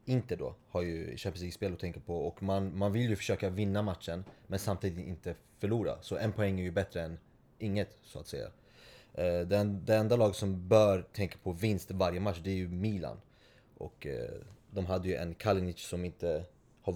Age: 20-39